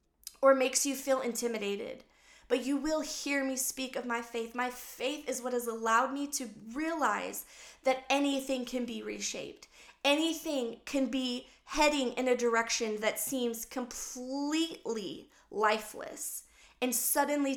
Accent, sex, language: American, female, English